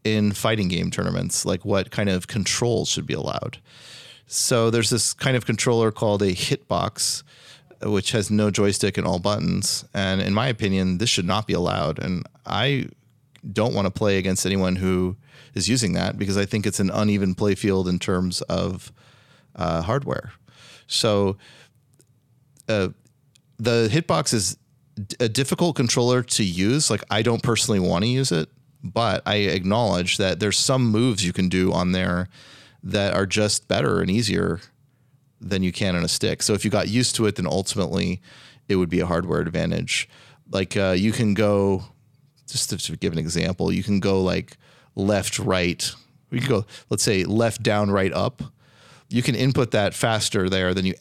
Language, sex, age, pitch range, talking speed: English, male, 30-49, 95-120 Hz, 180 wpm